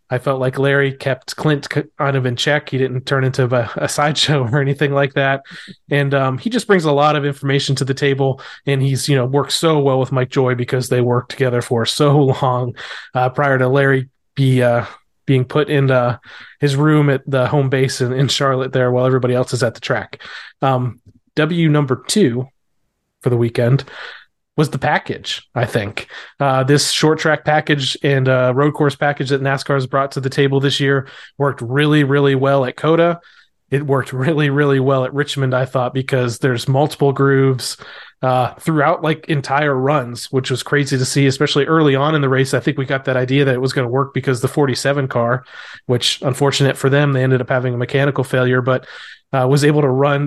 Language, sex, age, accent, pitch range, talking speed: English, male, 30-49, American, 130-145 Hz, 210 wpm